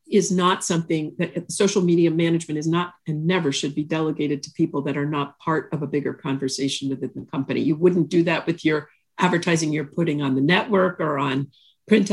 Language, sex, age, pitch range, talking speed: English, female, 50-69, 165-225 Hz, 210 wpm